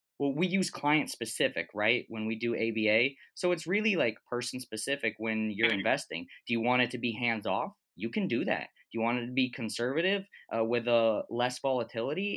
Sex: male